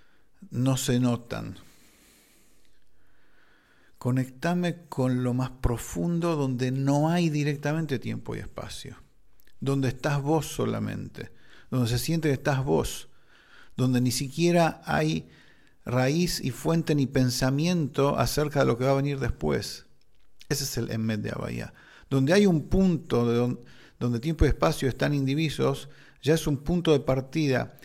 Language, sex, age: English, male, 50-69